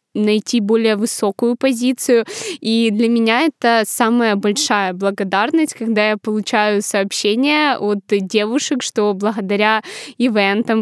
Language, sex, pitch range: Ukrainian, female, 205-235 Hz